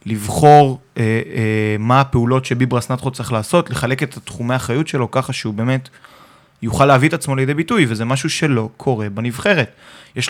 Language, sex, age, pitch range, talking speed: Hebrew, male, 20-39, 120-145 Hz, 165 wpm